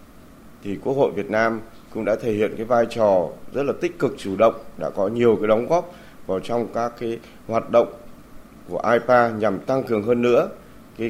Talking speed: 205 wpm